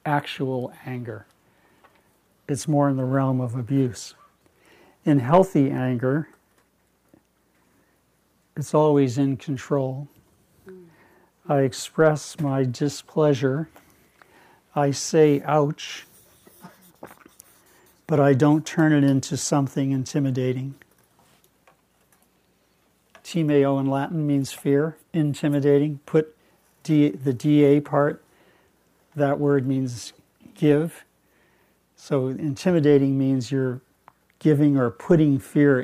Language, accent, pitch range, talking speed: English, American, 130-150 Hz, 90 wpm